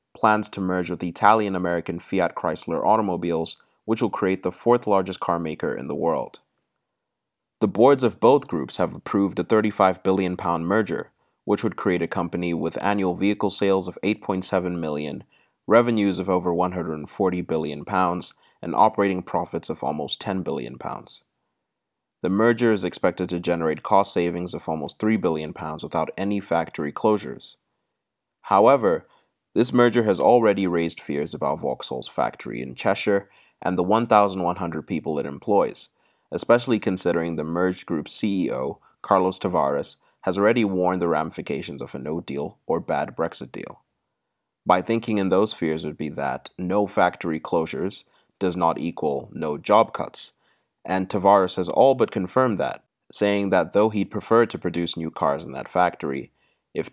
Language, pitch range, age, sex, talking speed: English, 85-105 Hz, 30-49, male, 150 wpm